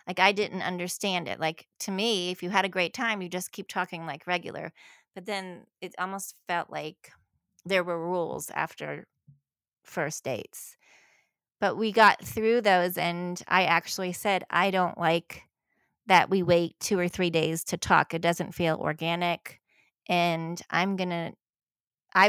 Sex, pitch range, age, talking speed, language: female, 170-195 Hz, 30-49, 165 wpm, English